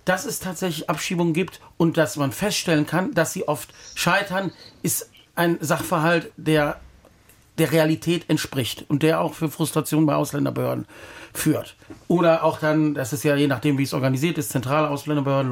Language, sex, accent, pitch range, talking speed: German, male, German, 150-175 Hz, 165 wpm